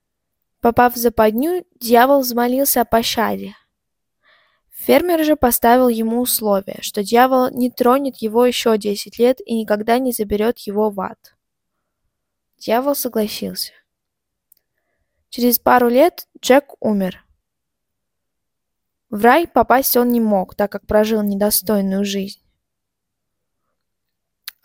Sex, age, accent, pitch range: female, 20-39, native, 210-250 Hz